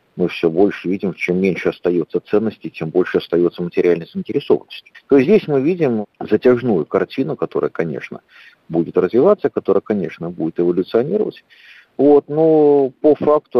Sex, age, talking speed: male, 50-69, 135 wpm